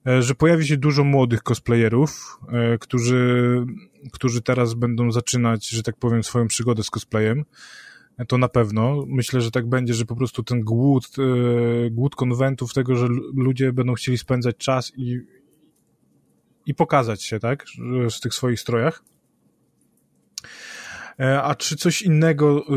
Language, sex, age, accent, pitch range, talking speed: Polish, male, 20-39, native, 120-135 Hz, 135 wpm